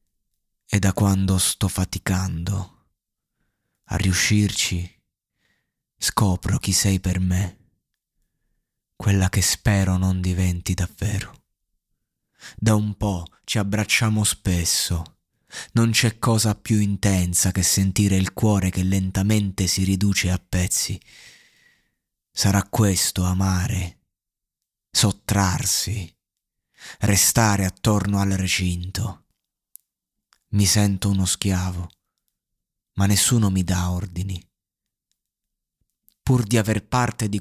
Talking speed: 100 wpm